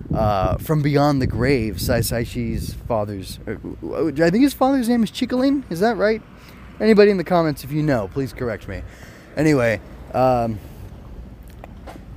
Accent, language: American, English